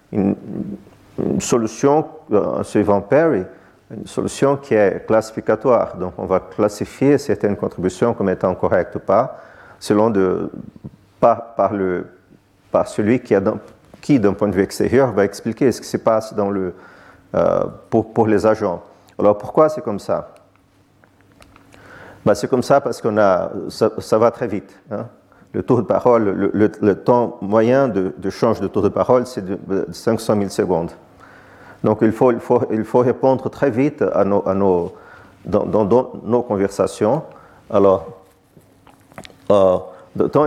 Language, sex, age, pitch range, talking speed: French, male, 40-59, 100-120 Hz, 160 wpm